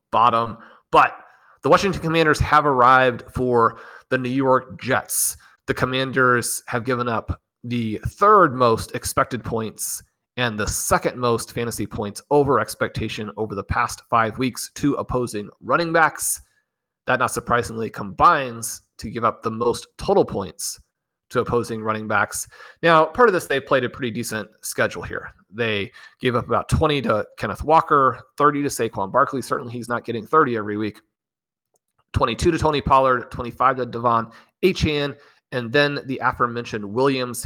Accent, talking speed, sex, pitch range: American, 155 wpm, male, 115-130 Hz